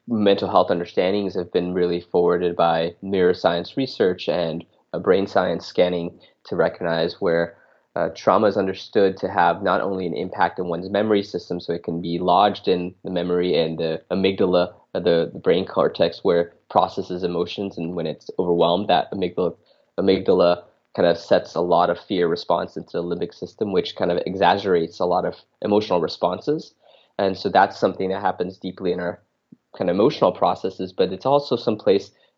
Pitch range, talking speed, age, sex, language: 90-100 Hz, 185 wpm, 20-39, male, English